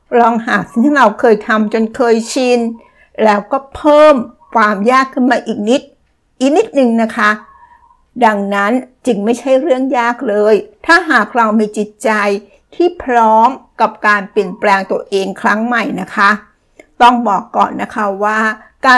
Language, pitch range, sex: Thai, 215-255 Hz, female